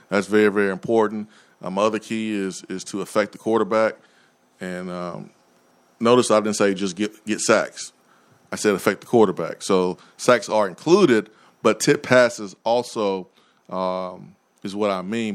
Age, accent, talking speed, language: 20-39, American, 165 wpm, English